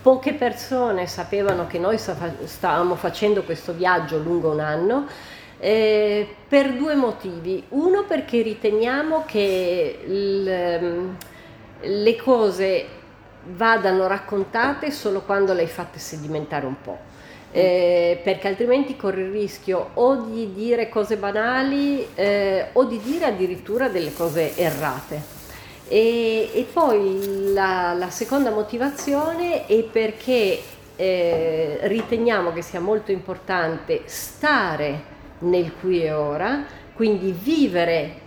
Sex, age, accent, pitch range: female, 40-59, native, 175-235 Hz